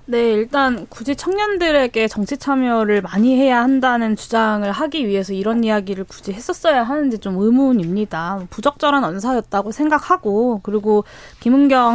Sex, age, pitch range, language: female, 20-39, 210-290 Hz, Korean